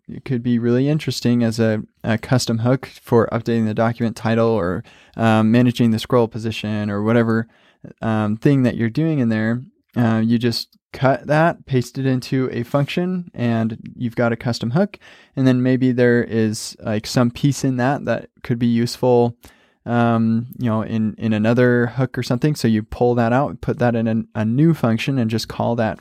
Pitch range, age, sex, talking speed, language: 115-135 Hz, 20-39, male, 195 wpm, English